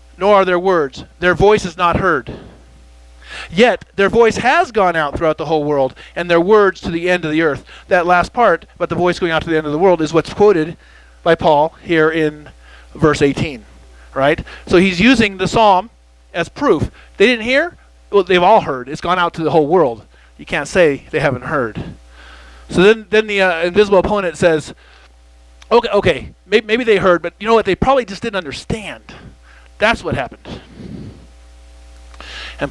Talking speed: 195 wpm